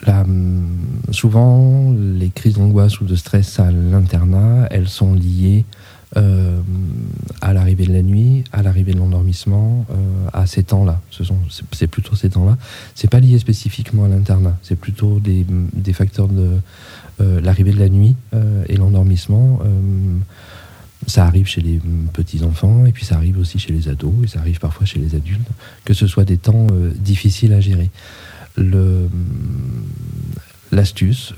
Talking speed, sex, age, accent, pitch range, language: 165 wpm, male, 40-59, French, 90-105 Hz, French